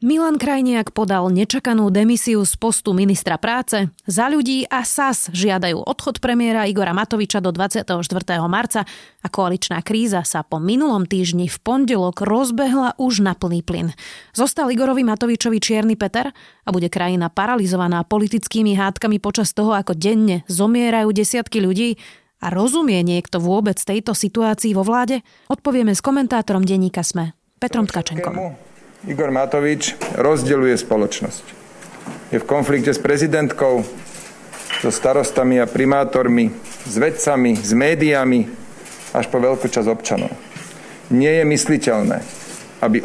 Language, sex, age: Slovak, female, 30-49